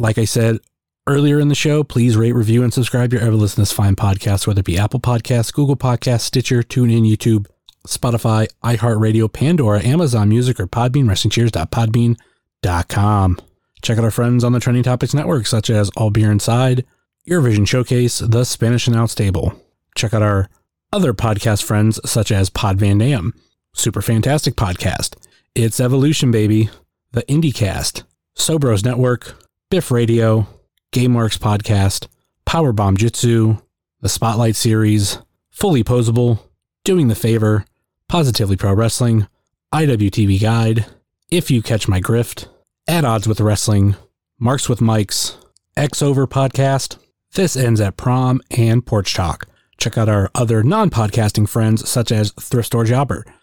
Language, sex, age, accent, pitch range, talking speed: English, male, 30-49, American, 105-125 Hz, 145 wpm